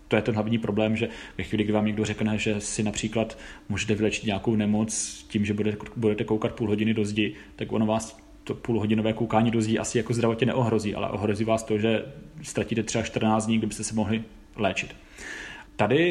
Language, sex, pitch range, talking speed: Czech, male, 110-125 Hz, 195 wpm